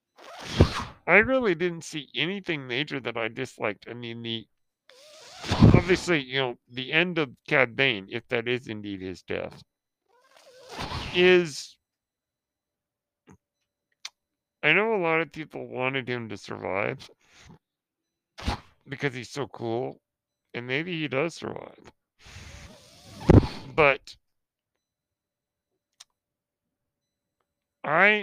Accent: American